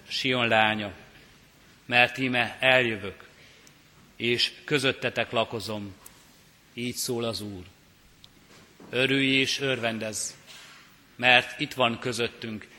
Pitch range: 110-130 Hz